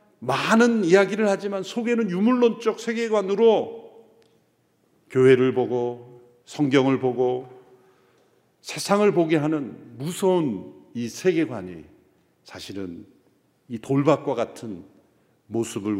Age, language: 50-69, Korean